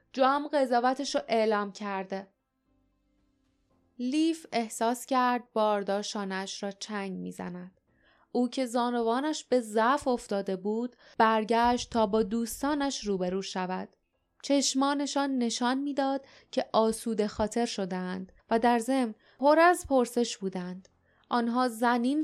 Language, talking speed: Persian, 110 wpm